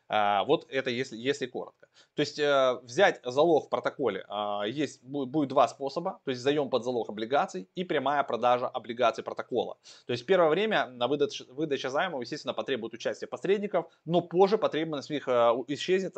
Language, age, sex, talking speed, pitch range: Russian, 20-39, male, 165 wpm, 115-165 Hz